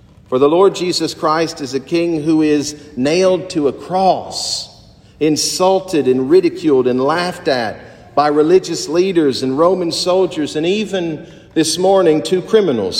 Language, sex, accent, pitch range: English, male, American, 120-165 Hz